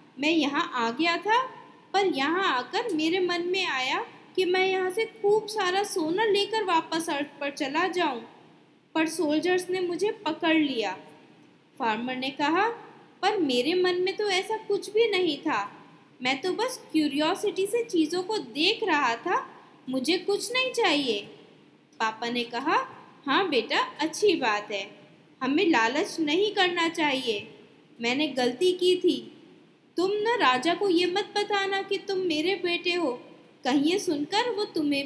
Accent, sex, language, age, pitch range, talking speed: native, female, Hindi, 20-39, 290-395 Hz, 155 wpm